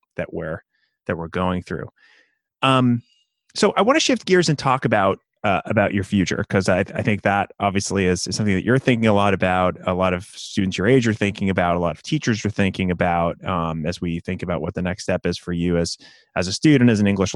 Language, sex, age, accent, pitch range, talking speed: English, male, 30-49, American, 90-120 Hz, 240 wpm